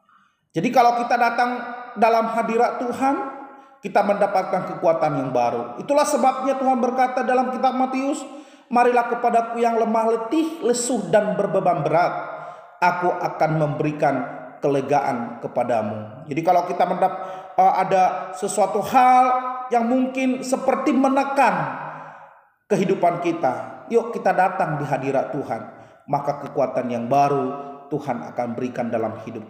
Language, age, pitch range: Indonesian, 30-49, 165-245 Hz